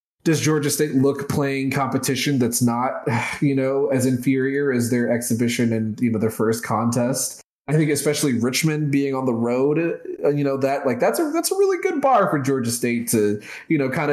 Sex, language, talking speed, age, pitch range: male, English, 200 wpm, 20-39, 125-155 Hz